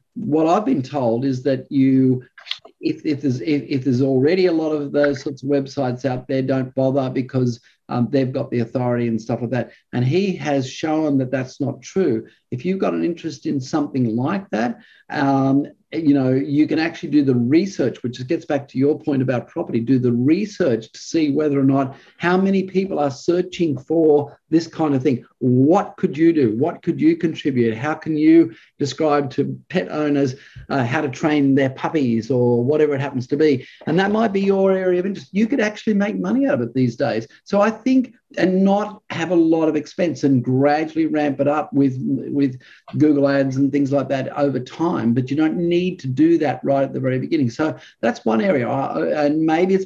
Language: English